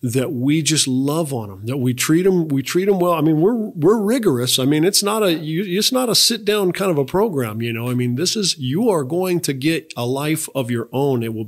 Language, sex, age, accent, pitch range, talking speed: English, male, 50-69, American, 125-150 Hz, 265 wpm